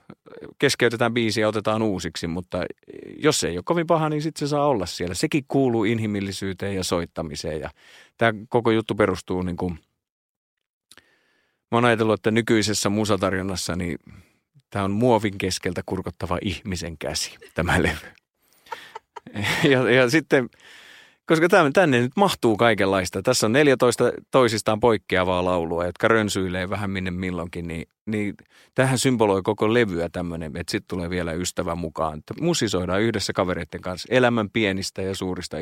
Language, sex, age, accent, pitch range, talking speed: Finnish, male, 30-49, native, 90-120 Hz, 145 wpm